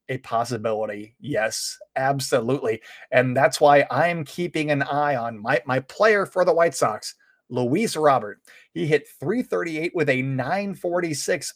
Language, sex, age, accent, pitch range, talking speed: English, male, 30-49, American, 120-145 Hz, 140 wpm